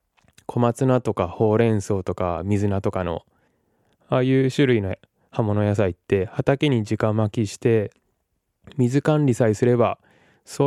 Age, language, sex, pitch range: 20-39, Japanese, male, 100-125 Hz